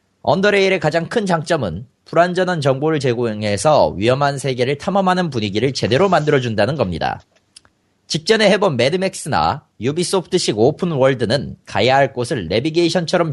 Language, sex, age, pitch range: Korean, male, 30-49, 130-185 Hz